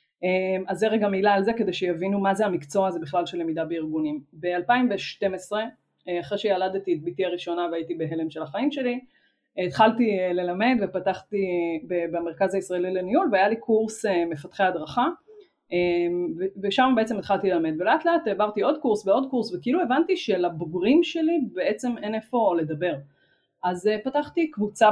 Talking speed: 145 wpm